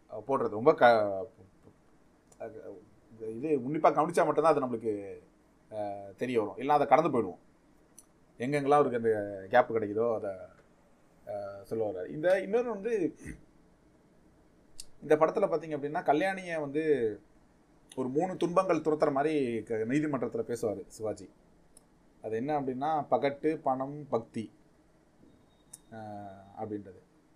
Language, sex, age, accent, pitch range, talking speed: Tamil, male, 30-49, native, 110-155 Hz, 100 wpm